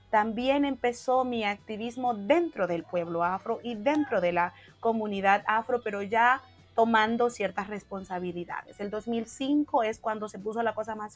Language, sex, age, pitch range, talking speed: Spanish, female, 30-49, 205-250 Hz, 150 wpm